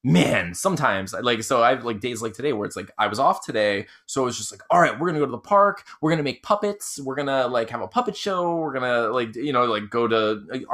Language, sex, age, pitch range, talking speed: English, male, 20-39, 115-160 Hz, 270 wpm